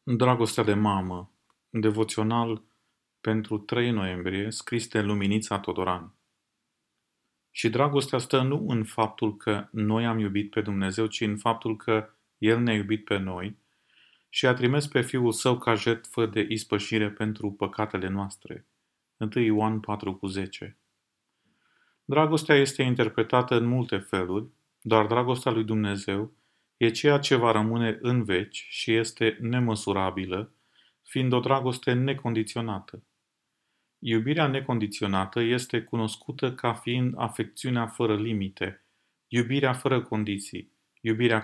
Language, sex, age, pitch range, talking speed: Romanian, male, 30-49, 105-125 Hz, 125 wpm